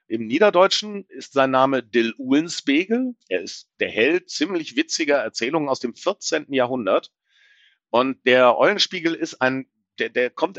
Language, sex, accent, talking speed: German, male, German, 145 wpm